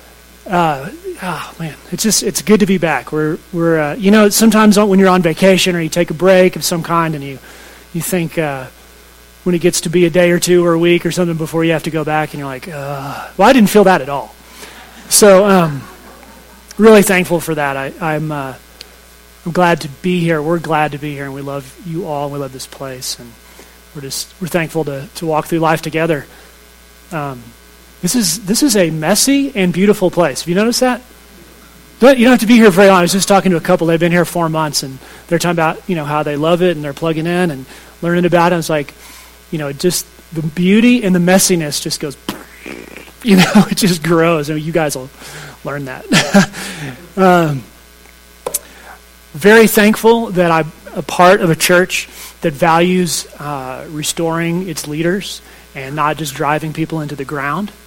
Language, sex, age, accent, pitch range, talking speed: English, male, 30-49, American, 145-185 Hz, 215 wpm